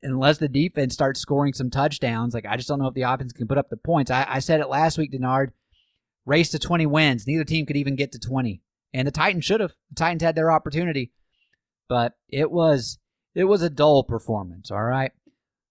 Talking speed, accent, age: 220 wpm, American, 30-49